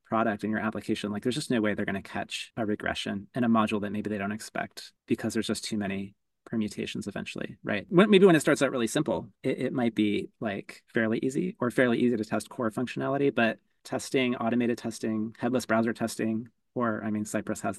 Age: 30-49